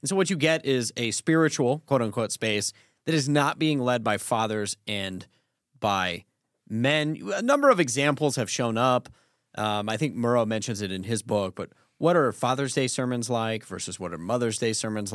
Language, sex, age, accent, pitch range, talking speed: English, male, 30-49, American, 105-135 Hz, 195 wpm